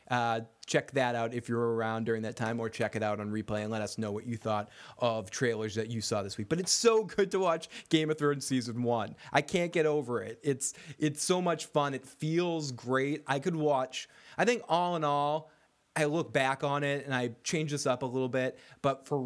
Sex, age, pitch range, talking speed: male, 20-39, 120-165 Hz, 240 wpm